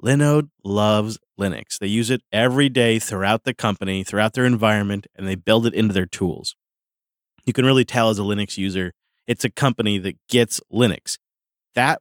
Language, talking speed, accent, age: English, 180 wpm, American, 30-49